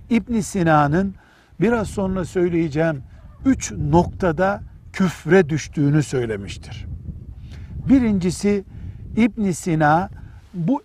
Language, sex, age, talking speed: Turkish, male, 60-79, 75 wpm